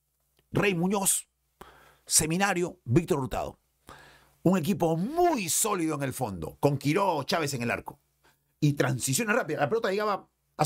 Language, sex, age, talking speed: Spanish, male, 50-69, 140 wpm